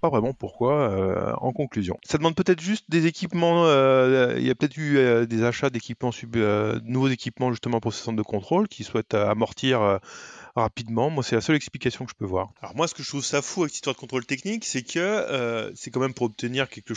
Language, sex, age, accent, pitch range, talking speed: French, male, 20-39, French, 115-150 Hz, 235 wpm